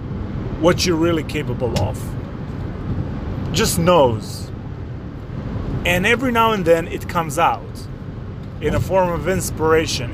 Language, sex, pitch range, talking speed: English, male, 110-160 Hz, 120 wpm